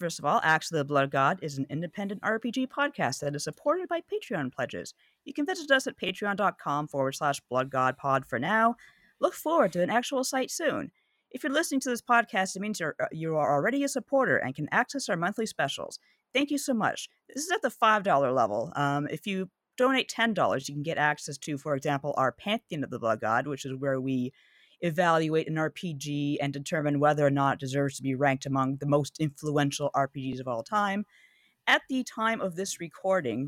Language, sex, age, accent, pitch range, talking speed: English, female, 40-59, American, 145-215 Hz, 205 wpm